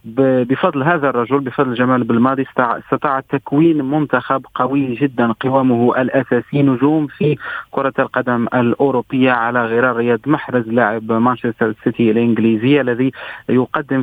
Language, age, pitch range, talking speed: Arabic, 40-59, 120-145 Hz, 120 wpm